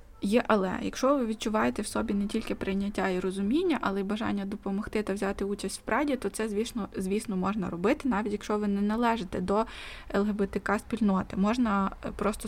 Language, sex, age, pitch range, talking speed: Ukrainian, female, 20-39, 190-215 Hz, 175 wpm